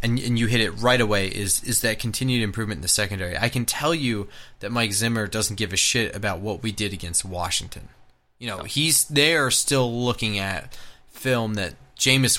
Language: English